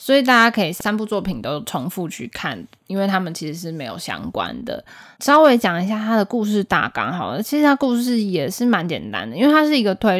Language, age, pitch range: Chinese, 20-39, 175-225 Hz